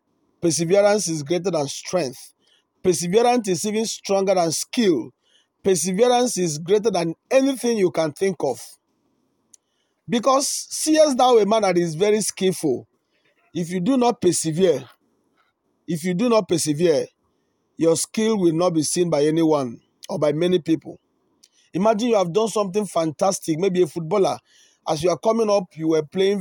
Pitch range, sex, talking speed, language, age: 170-215 Hz, male, 155 wpm, English, 40-59